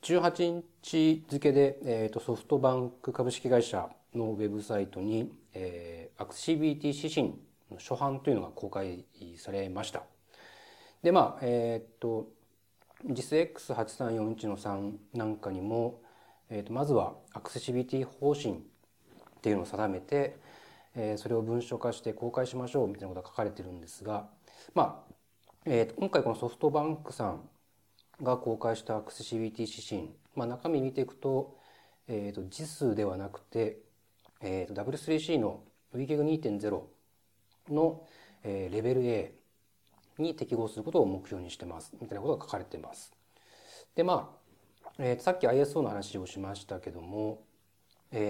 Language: Japanese